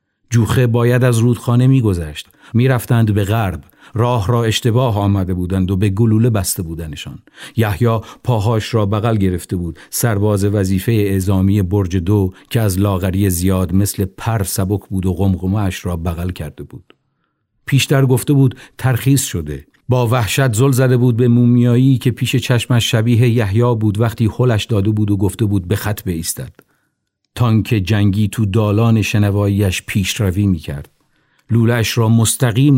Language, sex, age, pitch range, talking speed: Persian, male, 50-69, 95-120 Hz, 150 wpm